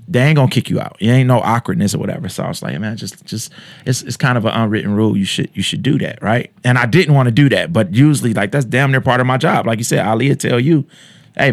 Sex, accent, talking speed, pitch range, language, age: male, American, 300 wpm, 110-145 Hz, English, 20-39